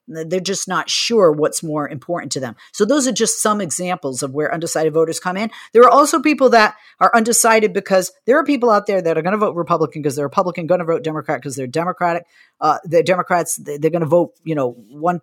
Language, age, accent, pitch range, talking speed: English, 50-69, American, 145-180 Hz, 235 wpm